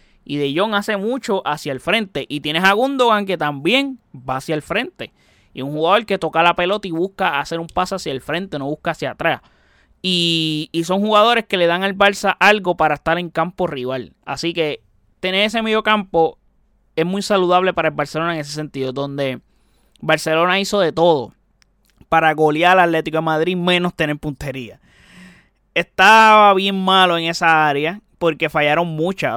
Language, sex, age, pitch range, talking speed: Spanish, male, 20-39, 145-180 Hz, 185 wpm